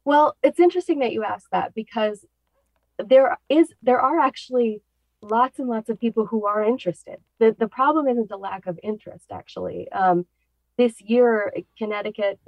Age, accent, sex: 30-49, American, female